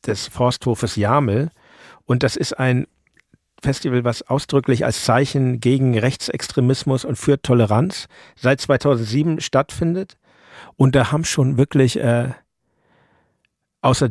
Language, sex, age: German, male, 50-69